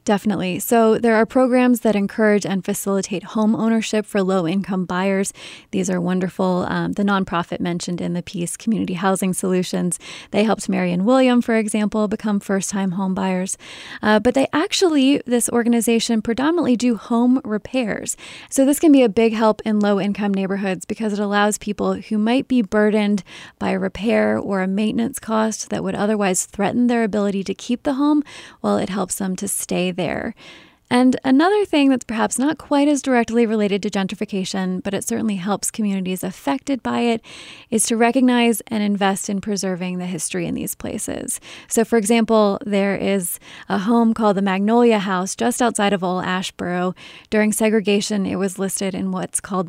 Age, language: 20-39, English